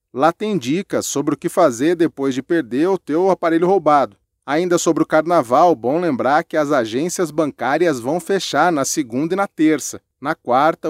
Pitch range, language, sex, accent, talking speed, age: 140-175 Hz, English, male, Brazilian, 180 wpm, 30-49